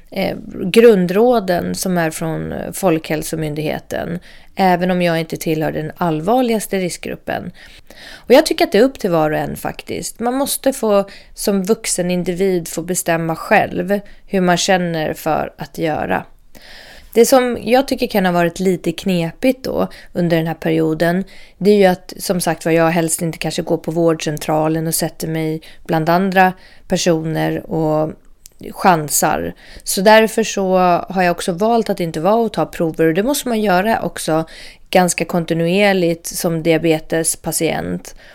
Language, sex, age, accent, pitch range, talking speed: English, female, 30-49, Swedish, 160-205 Hz, 155 wpm